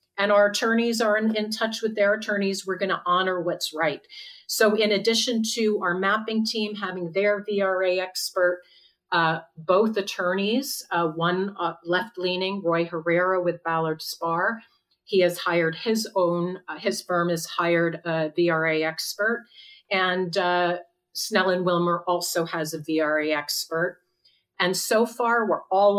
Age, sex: 40-59, female